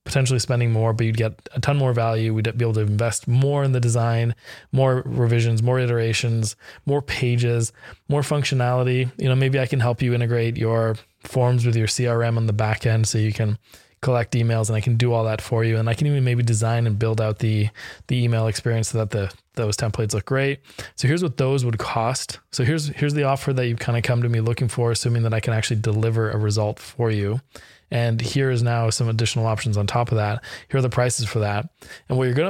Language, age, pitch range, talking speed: English, 20-39, 110-125 Hz, 235 wpm